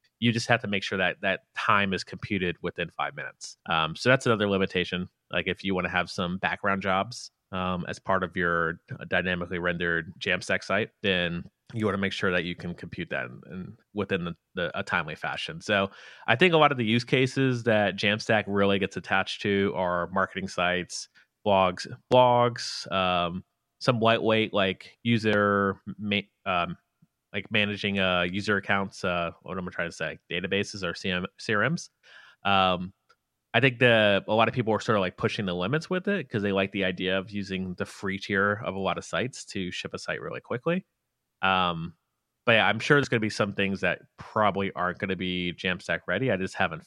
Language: English